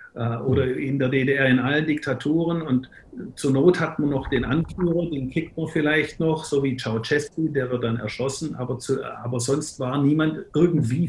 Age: 50-69